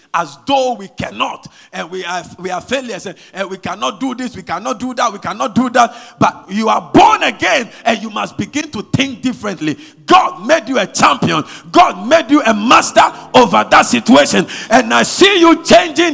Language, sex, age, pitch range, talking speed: English, male, 50-69, 175-265 Hz, 195 wpm